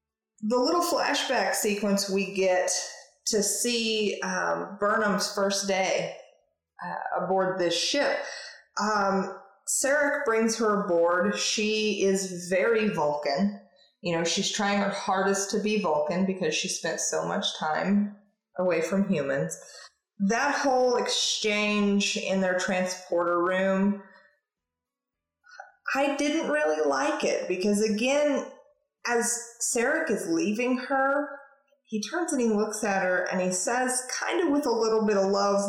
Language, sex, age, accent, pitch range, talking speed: English, female, 30-49, American, 195-255 Hz, 135 wpm